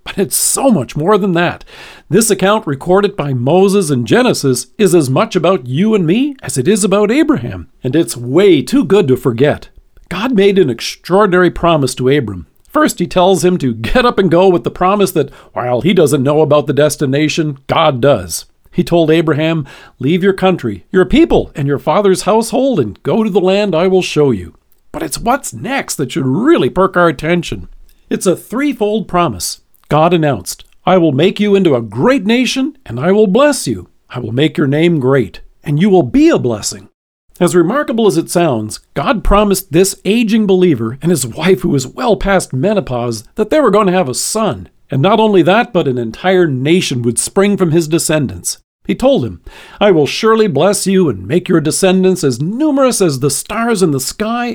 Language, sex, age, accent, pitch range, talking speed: English, male, 50-69, American, 140-200 Hz, 200 wpm